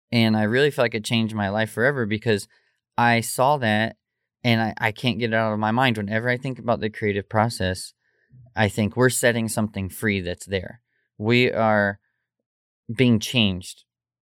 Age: 20-39